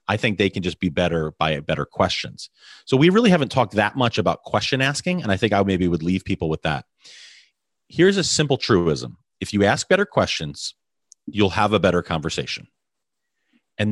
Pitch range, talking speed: 90-125 Hz, 195 wpm